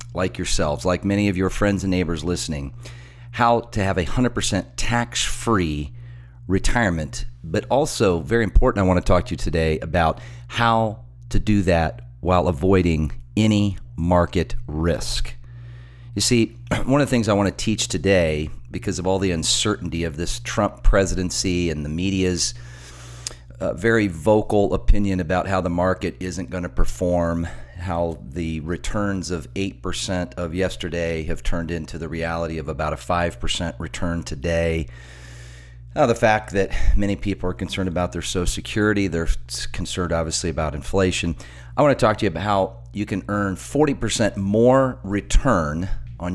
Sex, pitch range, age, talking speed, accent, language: male, 85-105 Hz, 40-59, 155 wpm, American, English